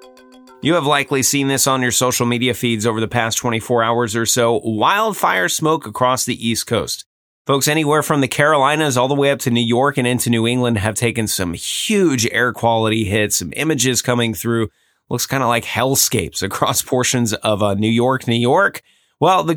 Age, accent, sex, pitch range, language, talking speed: 30-49, American, male, 110-135 Hz, English, 200 wpm